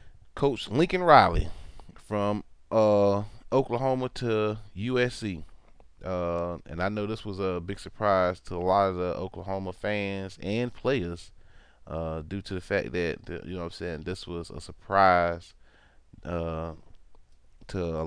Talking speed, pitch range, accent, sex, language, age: 145 wpm, 85-105 Hz, American, male, English, 30-49